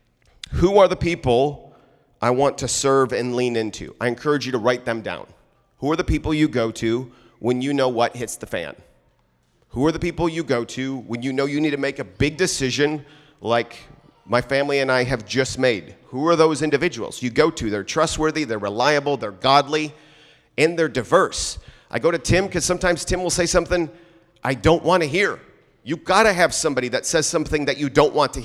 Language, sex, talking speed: English, male, 215 wpm